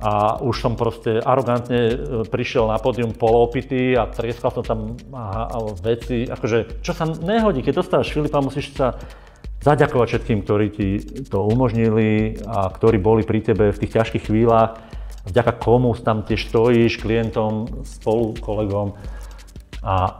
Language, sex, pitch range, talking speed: Slovak, male, 110-125 Hz, 145 wpm